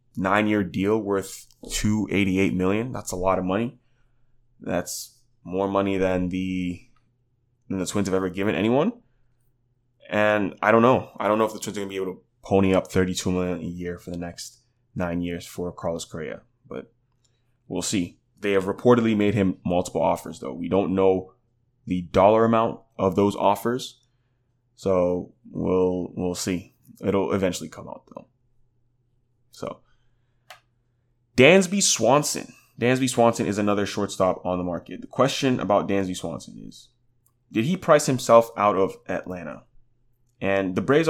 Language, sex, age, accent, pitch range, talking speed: English, male, 20-39, American, 95-120 Hz, 160 wpm